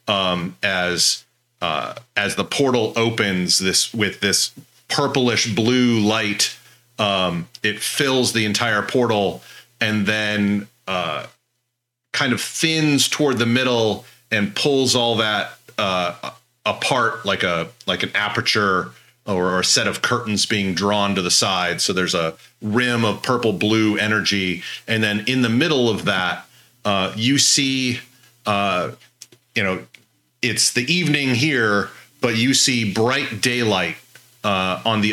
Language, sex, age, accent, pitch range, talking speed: English, male, 40-59, American, 100-125 Hz, 140 wpm